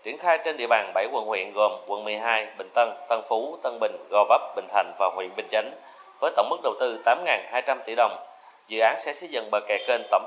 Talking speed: 245 wpm